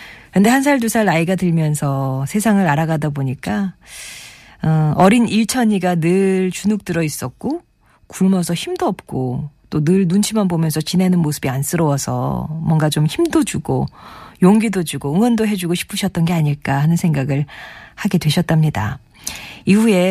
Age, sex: 40-59, female